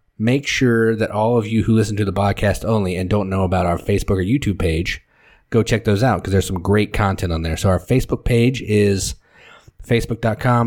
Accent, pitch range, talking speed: American, 95-115 Hz, 215 wpm